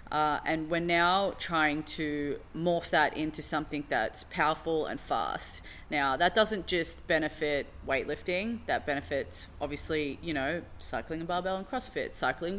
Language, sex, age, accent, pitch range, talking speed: English, female, 20-39, Australian, 145-170 Hz, 150 wpm